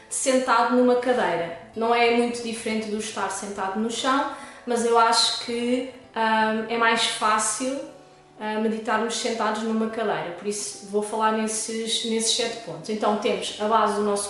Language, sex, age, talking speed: Portuguese, female, 20-39, 170 wpm